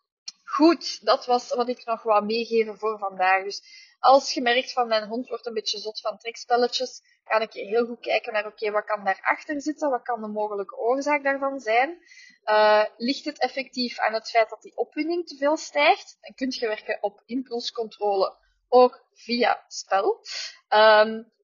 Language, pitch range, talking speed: Dutch, 215-275 Hz, 180 wpm